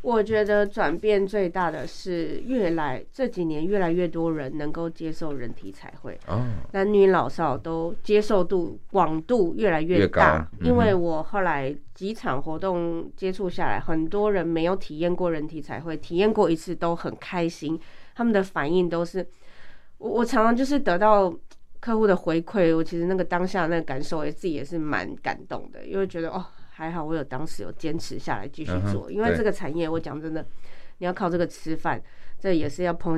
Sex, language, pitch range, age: female, Chinese, 155-190 Hz, 30-49